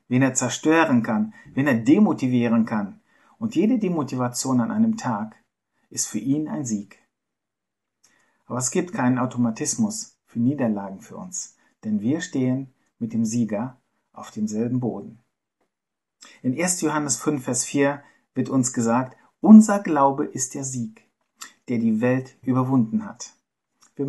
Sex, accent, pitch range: male, German, 120-180 Hz